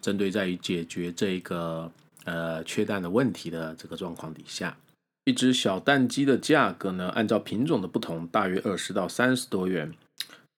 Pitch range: 90-130 Hz